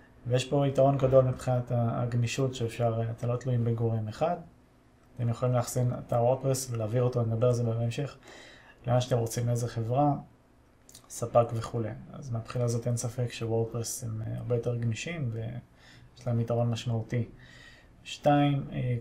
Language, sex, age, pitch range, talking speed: Hebrew, male, 30-49, 115-130 Hz, 140 wpm